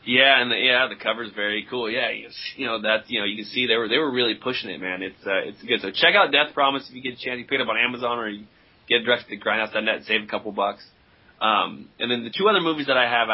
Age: 20-39